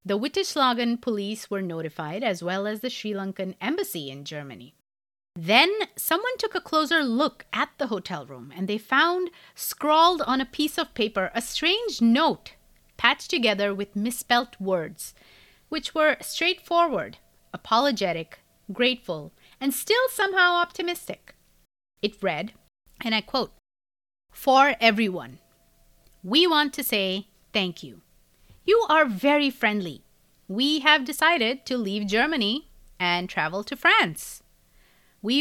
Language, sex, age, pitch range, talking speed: English, female, 30-49, 190-295 Hz, 130 wpm